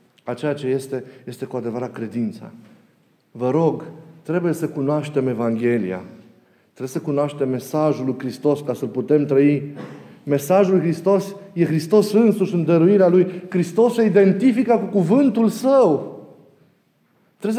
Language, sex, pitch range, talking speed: Romanian, male, 155-205 Hz, 135 wpm